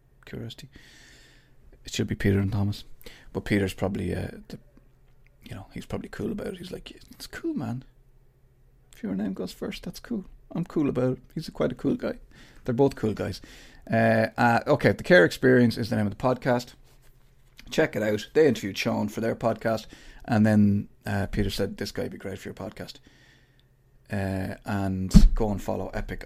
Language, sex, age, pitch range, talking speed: English, male, 30-49, 105-130 Hz, 195 wpm